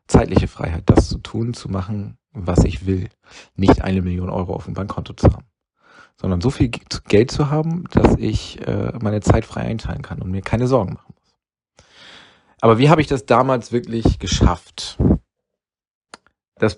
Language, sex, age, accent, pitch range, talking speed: German, male, 40-59, German, 95-125 Hz, 170 wpm